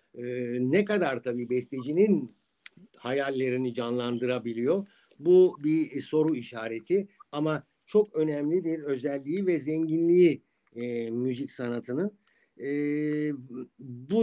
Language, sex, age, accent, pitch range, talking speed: Turkish, male, 60-79, native, 125-165 Hz, 95 wpm